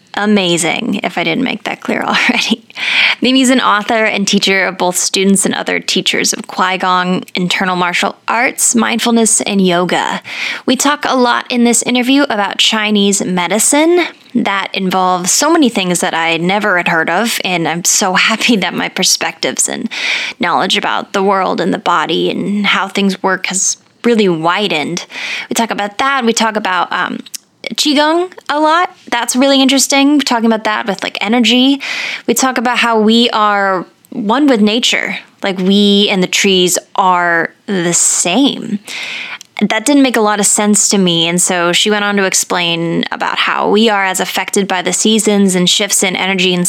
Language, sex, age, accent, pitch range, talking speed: English, female, 10-29, American, 185-240 Hz, 175 wpm